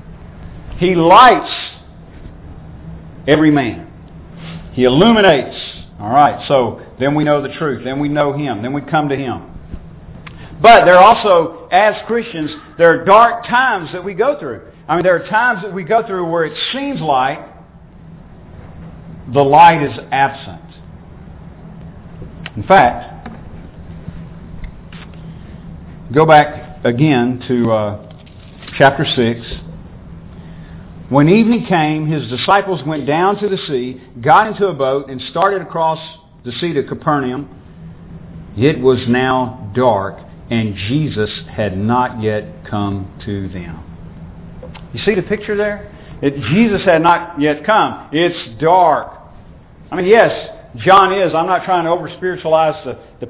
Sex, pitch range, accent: male, 125-180 Hz, American